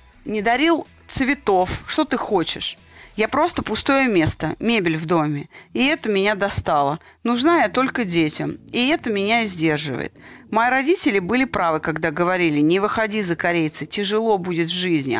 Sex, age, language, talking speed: female, 30-49, Russian, 155 wpm